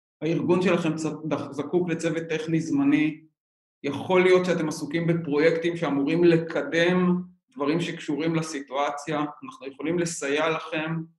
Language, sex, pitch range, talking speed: Hebrew, male, 145-175 Hz, 105 wpm